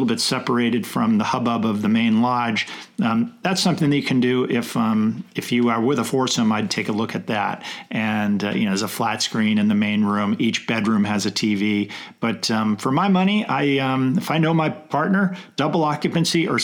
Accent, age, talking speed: American, 50-69, 225 wpm